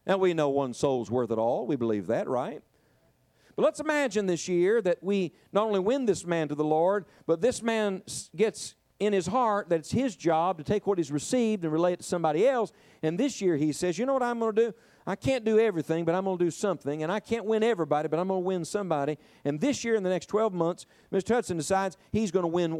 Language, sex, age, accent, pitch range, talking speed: English, male, 50-69, American, 165-215 Hz, 255 wpm